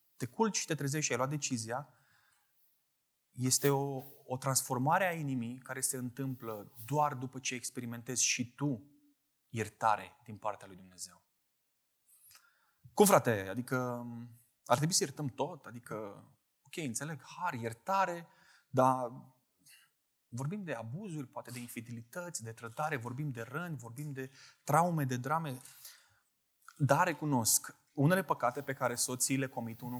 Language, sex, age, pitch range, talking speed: Romanian, male, 20-39, 115-150 Hz, 140 wpm